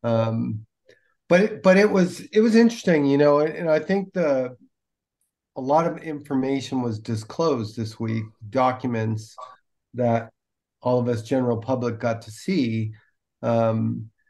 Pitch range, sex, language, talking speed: 110-140 Hz, male, English, 140 wpm